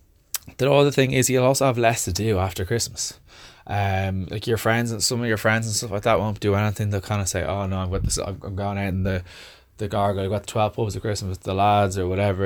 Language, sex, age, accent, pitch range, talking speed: English, male, 20-39, Irish, 95-110 Hz, 275 wpm